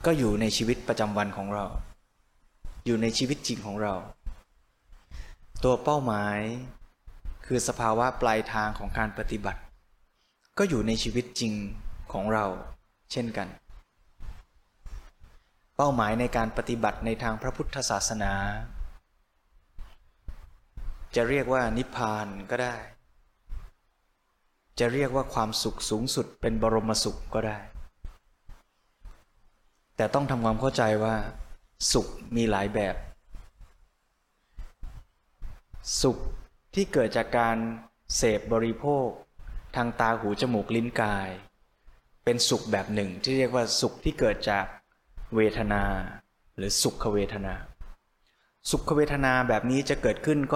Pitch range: 100-120 Hz